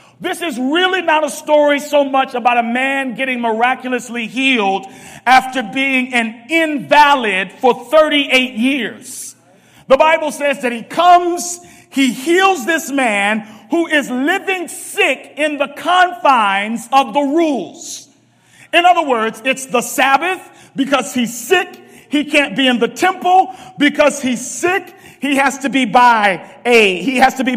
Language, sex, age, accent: English, male, 40-59, American